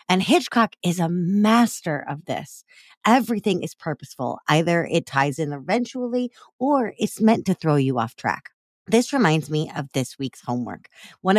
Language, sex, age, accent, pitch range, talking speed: English, female, 30-49, American, 165-235 Hz, 165 wpm